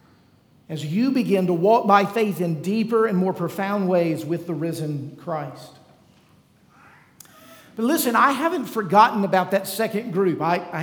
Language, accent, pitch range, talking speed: English, American, 185-225 Hz, 155 wpm